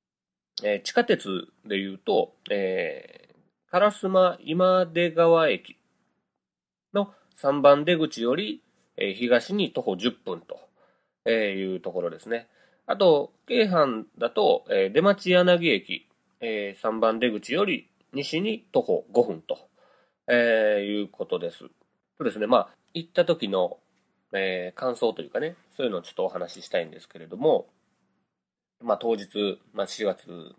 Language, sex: Japanese, male